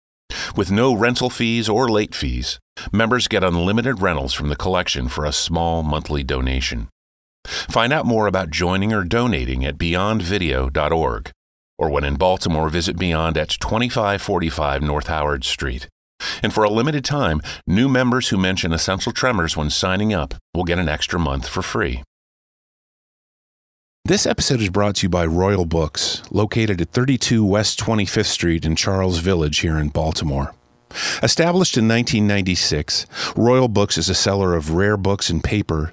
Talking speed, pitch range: 155 wpm, 80-110 Hz